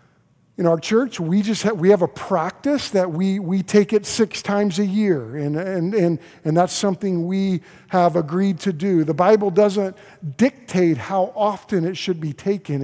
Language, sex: English, male